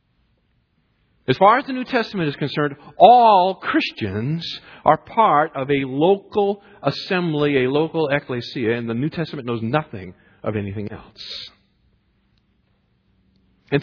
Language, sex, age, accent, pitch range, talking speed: English, male, 50-69, American, 130-180 Hz, 125 wpm